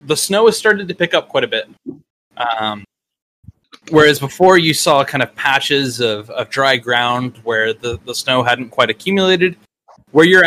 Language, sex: English, male